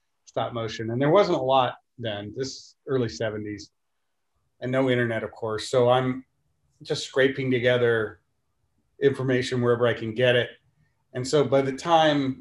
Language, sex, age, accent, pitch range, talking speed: English, male, 40-59, American, 115-130 Hz, 155 wpm